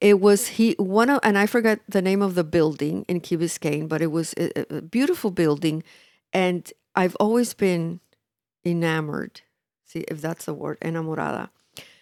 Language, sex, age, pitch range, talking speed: English, female, 50-69, 170-210 Hz, 170 wpm